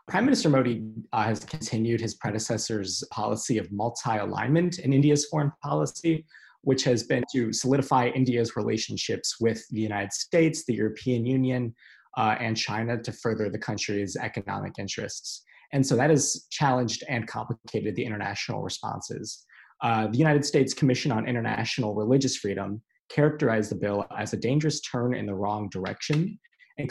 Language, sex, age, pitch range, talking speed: English, male, 20-39, 105-130 Hz, 155 wpm